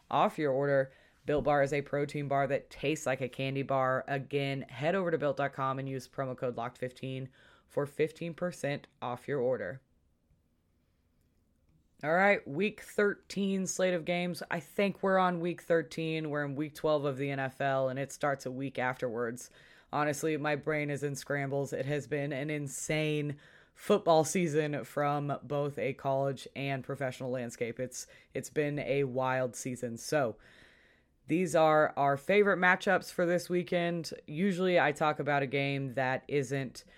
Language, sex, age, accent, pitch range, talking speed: English, female, 20-39, American, 130-155 Hz, 160 wpm